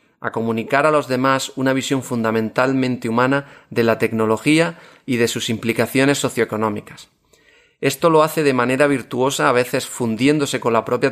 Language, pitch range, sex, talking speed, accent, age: Spanish, 115-140 Hz, male, 155 wpm, Spanish, 30-49